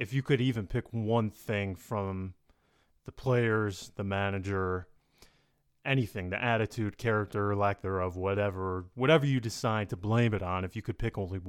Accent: American